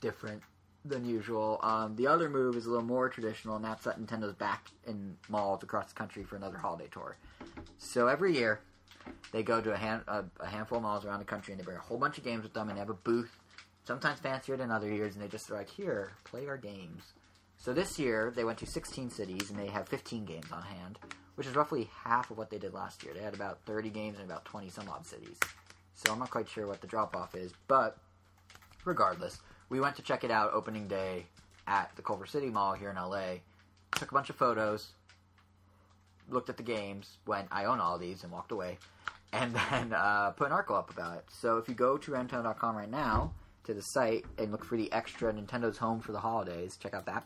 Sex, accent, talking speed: male, American, 235 wpm